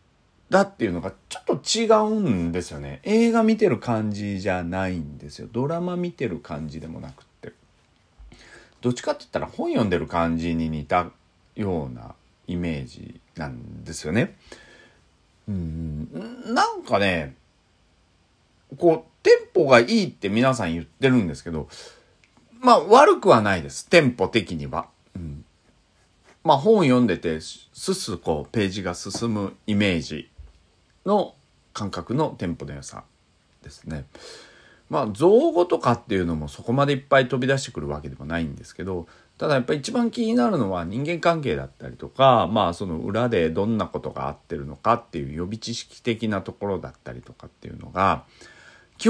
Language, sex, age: Japanese, male, 40-59